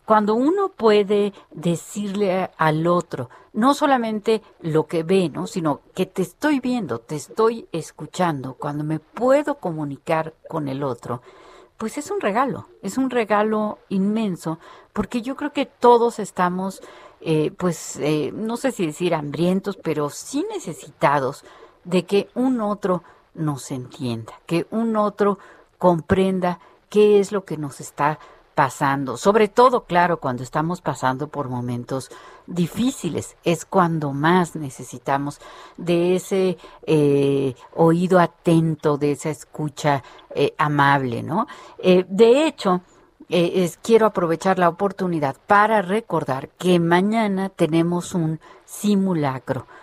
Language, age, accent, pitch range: Spanish, 50-69, Mexican, 150-205 Hz